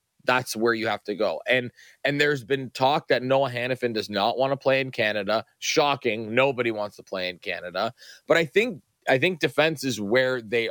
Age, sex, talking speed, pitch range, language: 20-39, male, 205 wpm, 110-135 Hz, English